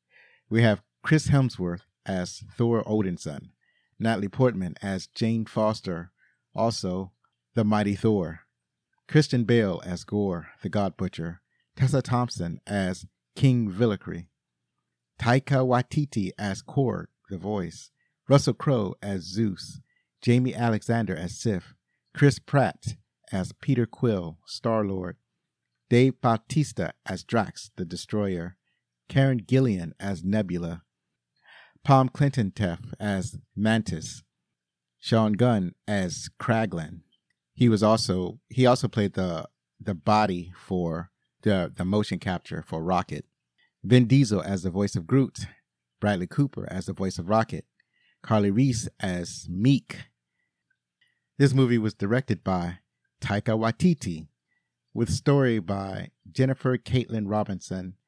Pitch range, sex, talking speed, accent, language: 95-125 Hz, male, 120 wpm, American, English